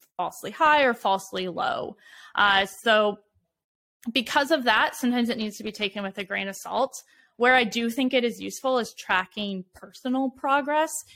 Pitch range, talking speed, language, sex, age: 195-240 Hz, 170 wpm, English, female, 20-39